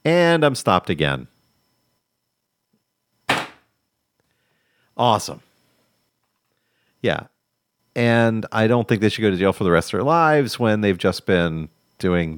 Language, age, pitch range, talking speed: English, 40-59, 90-115 Hz, 125 wpm